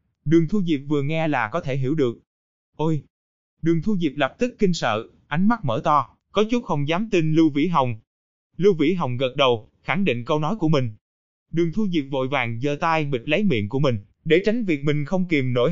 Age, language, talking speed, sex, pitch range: 20-39, Vietnamese, 230 wpm, male, 130-175 Hz